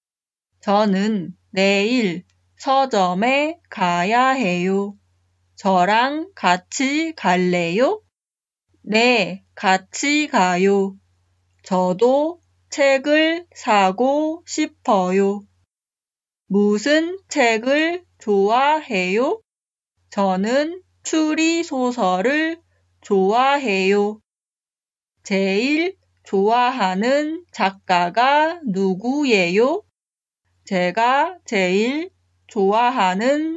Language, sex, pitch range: Korean, female, 190-280 Hz